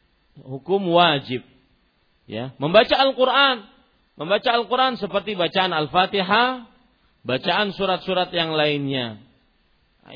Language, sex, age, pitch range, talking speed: Malay, male, 40-59, 140-210 Hz, 90 wpm